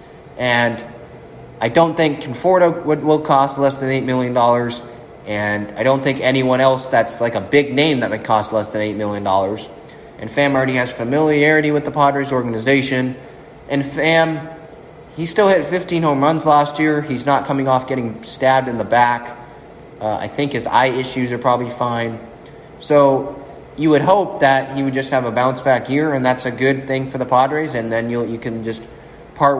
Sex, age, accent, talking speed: male, 20-39, American, 195 wpm